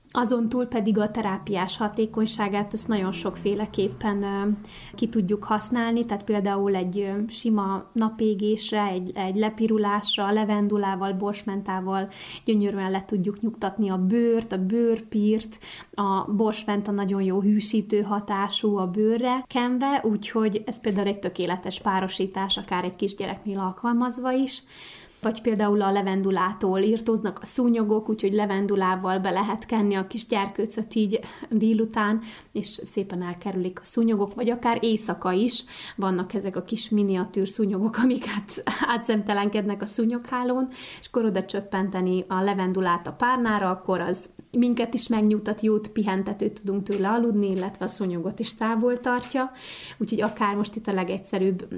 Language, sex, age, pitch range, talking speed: Hungarian, female, 30-49, 195-225 Hz, 135 wpm